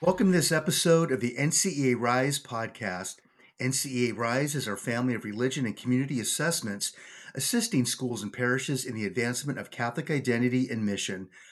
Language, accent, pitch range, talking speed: English, American, 115-135 Hz, 160 wpm